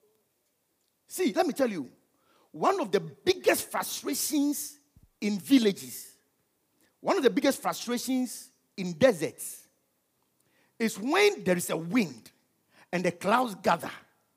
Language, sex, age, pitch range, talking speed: English, male, 50-69, 175-300 Hz, 120 wpm